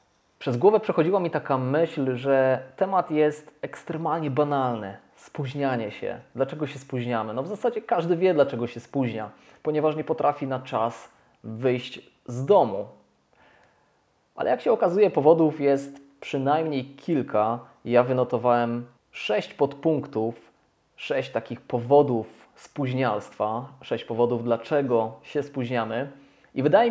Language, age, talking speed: Polish, 20-39, 125 wpm